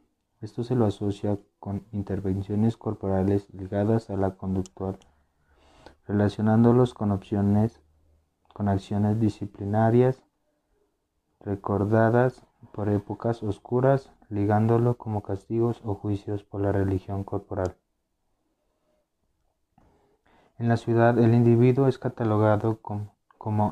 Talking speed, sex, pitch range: 100 wpm, male, 100-115 Hz